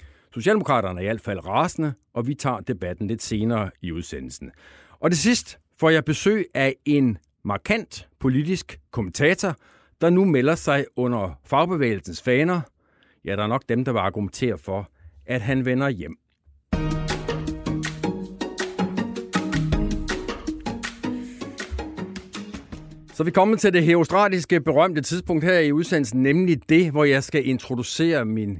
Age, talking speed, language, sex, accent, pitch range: 60-79, 130 wpm, Danish, male, native, 100-155 Hz